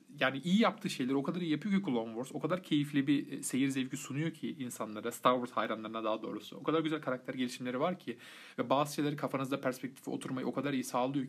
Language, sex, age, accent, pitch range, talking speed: Turkish, male, 40-59, native, 130-175 Hz, 225 wpm